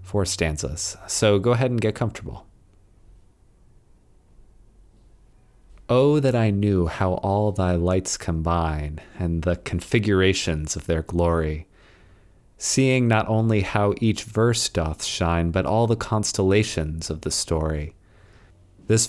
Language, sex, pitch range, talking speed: English, male, 90-110 Hz, 125 wpm